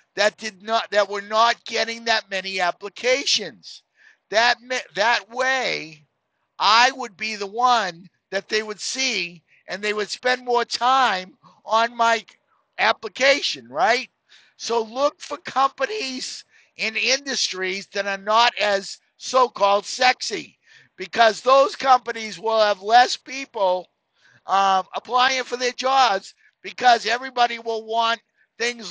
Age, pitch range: 50-69, 195-250 Hz